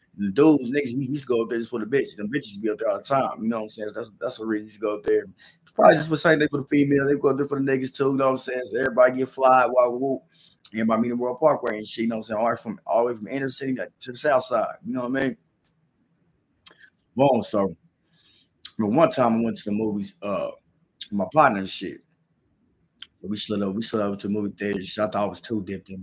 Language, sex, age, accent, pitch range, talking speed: English, male, 20-39, American, 105-135 Hz, 295 wpm